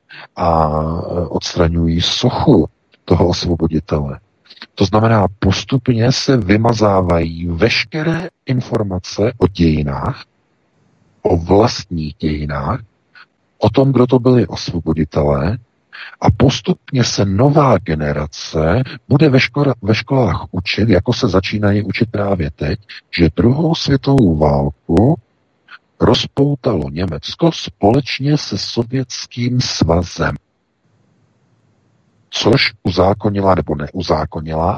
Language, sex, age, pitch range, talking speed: Czech, male, 50-69, 80-120 Hz, 90 wpm